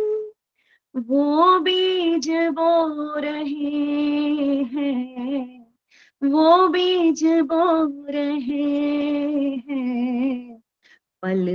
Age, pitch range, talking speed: 30-49, 285-390 Hz, 55 wpm